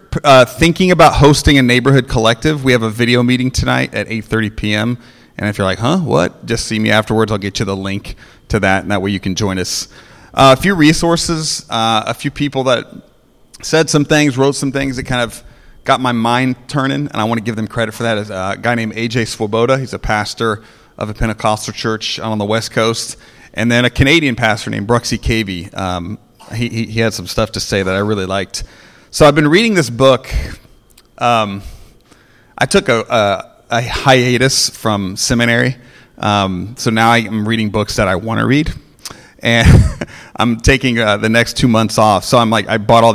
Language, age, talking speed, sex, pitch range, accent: English, 30-49, 210 wpm, male, 105-125 Hz, American